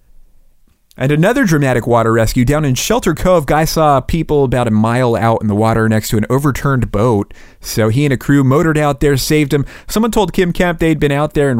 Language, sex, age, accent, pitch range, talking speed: English, male, 30-49, American, 105-145 Hz, 220 wpm